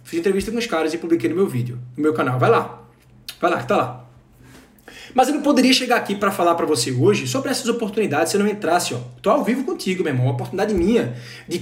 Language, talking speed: Portuguese, 255 wpm